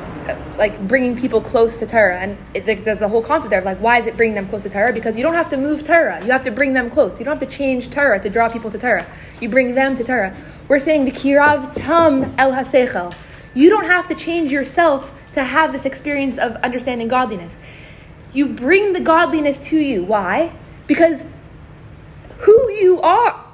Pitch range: 220-290 Hz